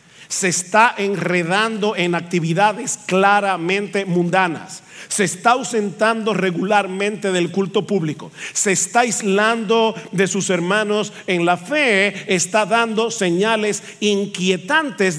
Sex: male